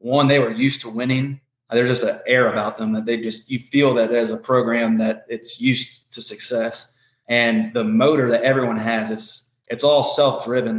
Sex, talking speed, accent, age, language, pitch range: male, 200 wpm, American, 20-39, English, 115-130 Hz